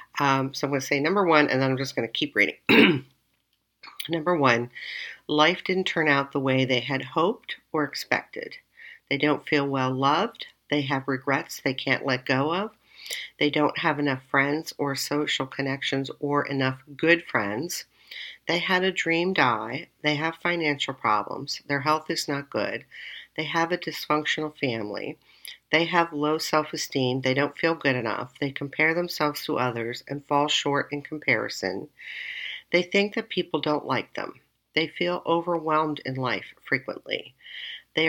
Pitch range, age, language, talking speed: 135-165 Hz, 50-69, English, 165 wpm